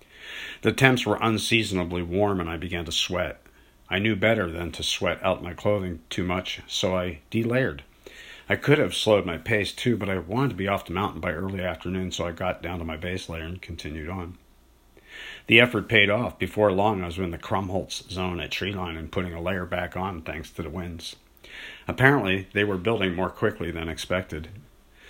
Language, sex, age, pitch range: English, male, 50-69, 85-105 Hz